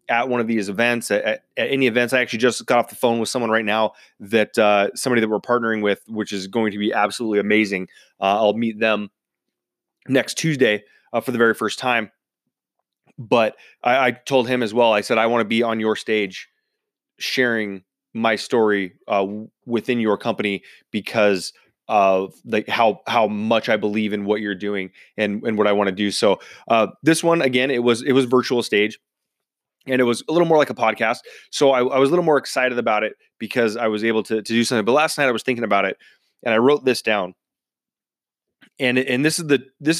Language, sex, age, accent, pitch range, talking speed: English, male, 20-39, American, 105-130 Hz, 215 wpm